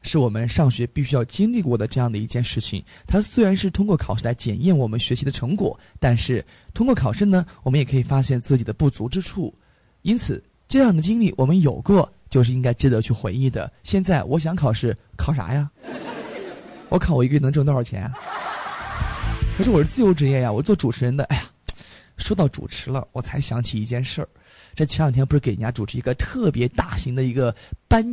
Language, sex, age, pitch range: Chinese, male, 20-39, 120-175 Hz